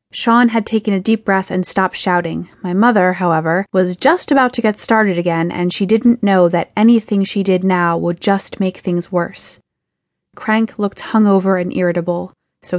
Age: 20-39